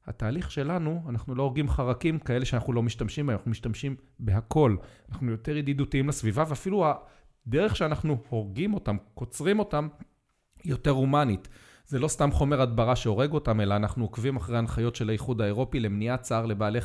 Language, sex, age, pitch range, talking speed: Hebrew, male, 40-59, 110-140 Hz, 165 wpm